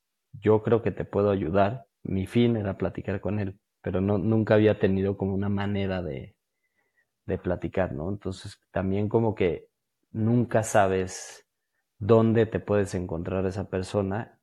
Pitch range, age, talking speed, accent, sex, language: 95-110 Hz, 30-49, 145 wpm, Mexican, male, Spanish